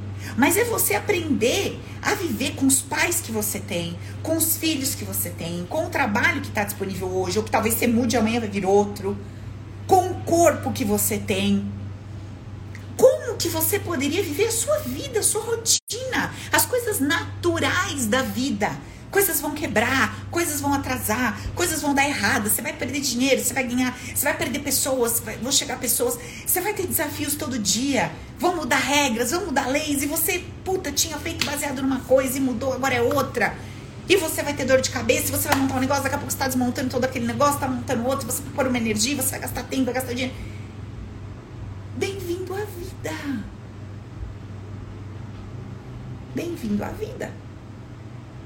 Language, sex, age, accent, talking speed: Portuguese, female, 40-59, Brazilian, 185 wpm